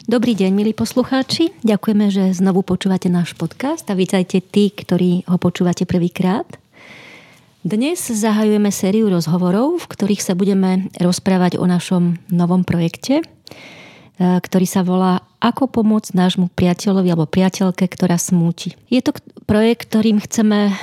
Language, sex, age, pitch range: Slovak, female, 30-49, 180-205 Hz